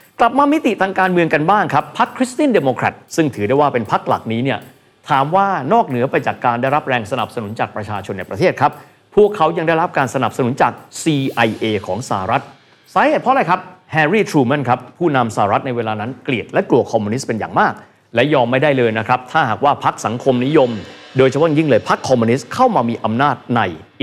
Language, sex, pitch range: Thai, male, 115-155 Hz